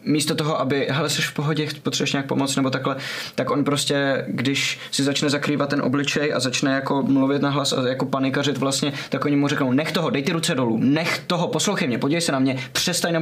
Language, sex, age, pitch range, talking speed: Czech, male, 20-39, 130-150 Hz, 225 wpm